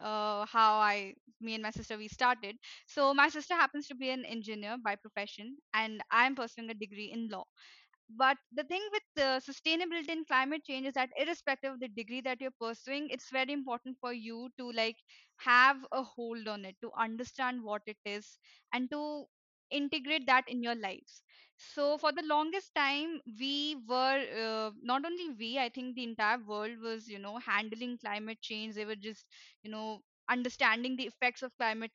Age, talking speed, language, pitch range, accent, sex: 20-39, 190 wpm, English, 225-275 Hz, Indian, female